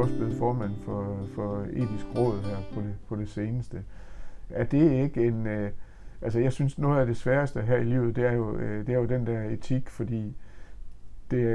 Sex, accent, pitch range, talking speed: male, native, 105-125 Hz, 220 wpm